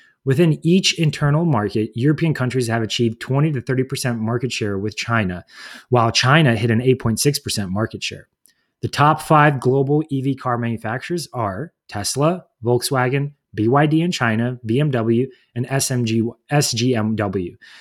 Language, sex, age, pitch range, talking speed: English, male, 30-49, 115-145 Hz, 130 wpm